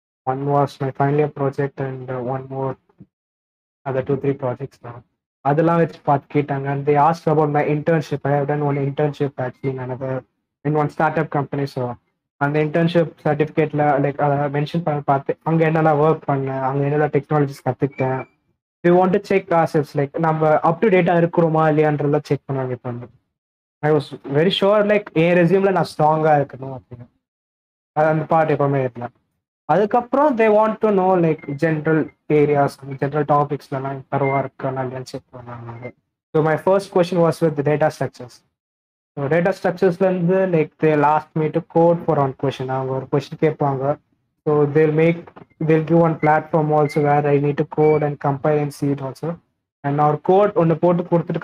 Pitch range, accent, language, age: 135-165 Hz, native, Tamil, 20-39